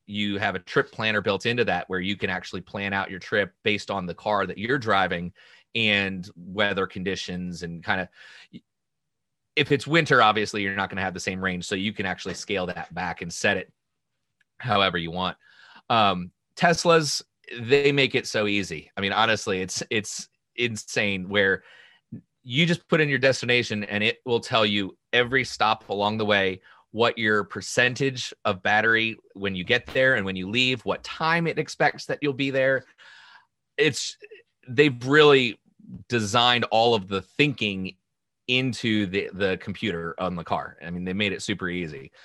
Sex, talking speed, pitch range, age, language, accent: male, 180 wpm, 95-130 Hz, 30-49, English, American